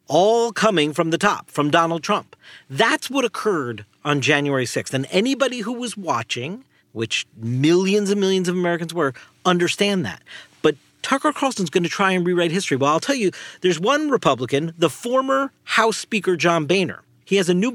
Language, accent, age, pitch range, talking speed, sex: English, American, 50-69, 150-205 Hz, 185 wpm, male